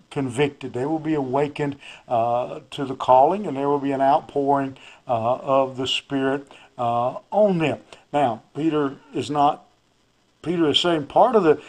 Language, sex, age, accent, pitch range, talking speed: English, male, 50-69, American, 130-160 Hz, 165 wpm